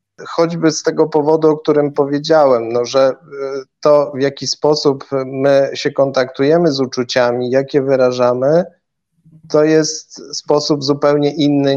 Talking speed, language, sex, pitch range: 130 wpm, Polish, male, 125-145 Hz